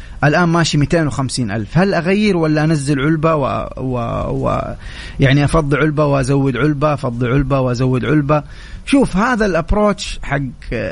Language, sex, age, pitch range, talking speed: English, male, 30-49, 130-170 Hz, 130 wpm